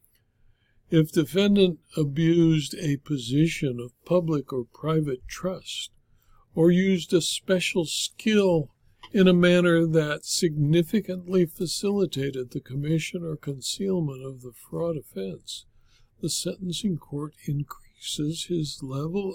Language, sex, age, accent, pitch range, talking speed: English, male, 60-79, American, 130-175 Hz, 110 wpm